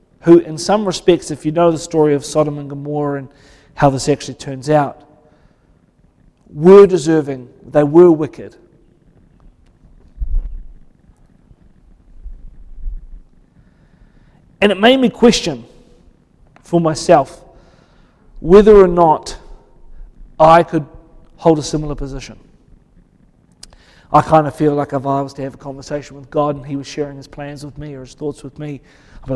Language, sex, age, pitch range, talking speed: English, male, 40-59, 145-175 Hz, 140 wpm